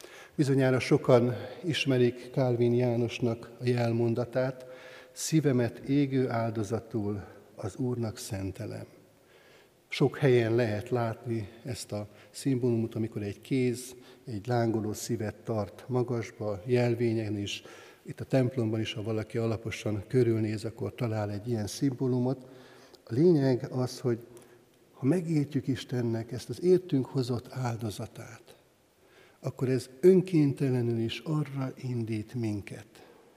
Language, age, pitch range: Hungarian, 60-79, 115-130 Hz